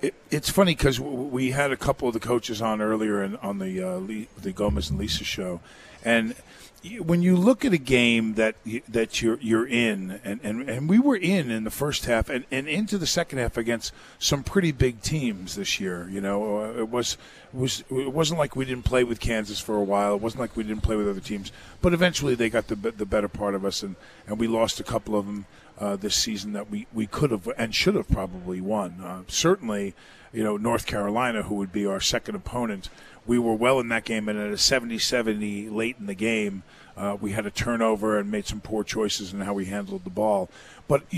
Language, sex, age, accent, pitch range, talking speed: English, male, 40-59, American, 105-130 Hz, 230 wpm